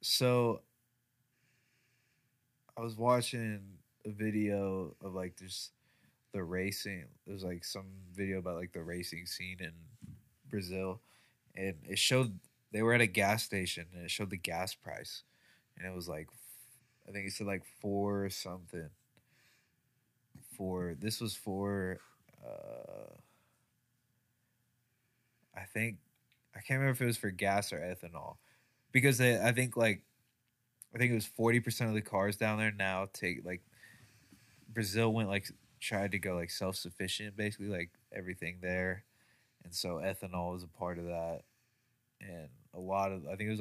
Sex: male